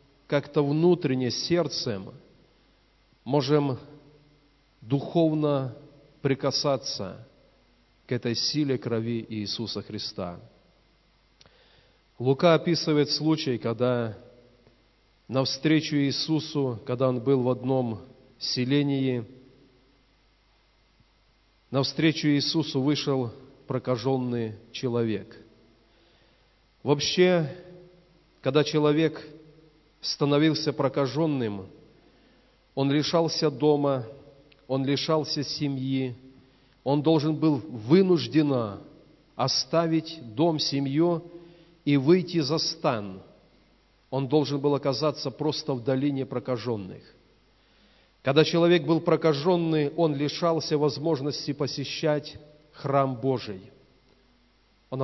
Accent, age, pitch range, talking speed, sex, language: native, 40-59, 125-150 Hz, 75 wpm, male, Russian